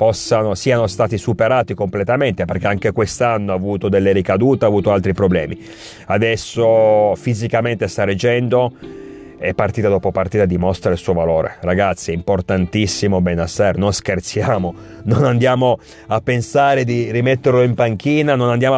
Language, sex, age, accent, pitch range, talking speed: Italian, male, 30-49, native, 100-120 Hz, 135 wpm